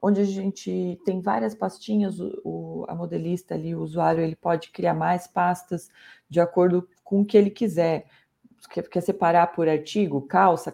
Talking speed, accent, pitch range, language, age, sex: 175 wpm, Brazilian, 170-205 Hz, Portuguese, 30-49, female